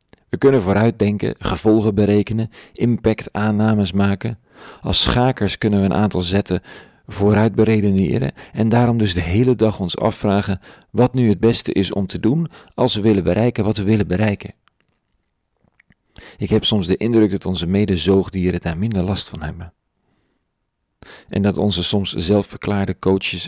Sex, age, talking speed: male, 40-59, 150 wpm